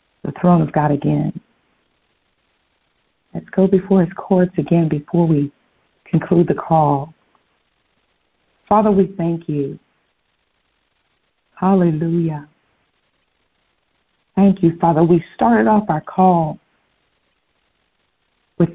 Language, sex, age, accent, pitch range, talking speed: English, female, 50-69, American, 165-200 Hz, 95 wpm